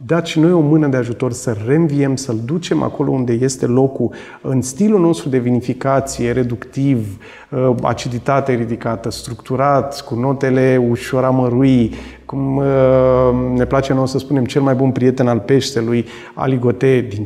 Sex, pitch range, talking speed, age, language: male, 115-135 Hz, 145 wpm, 30-49, Romanian